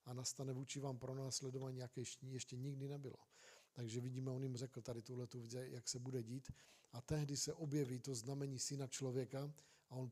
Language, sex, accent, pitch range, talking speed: Czech, male, native, 130-145 Hz, 185 wpm